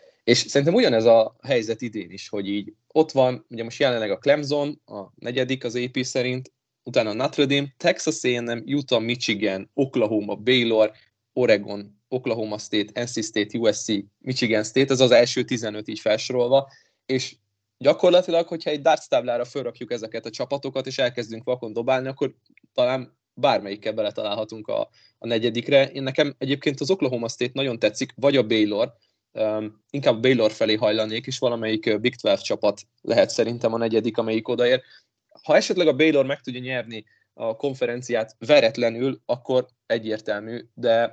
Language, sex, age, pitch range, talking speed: Hungarian, male, 20-39, 110-135 Hz, 155 wpm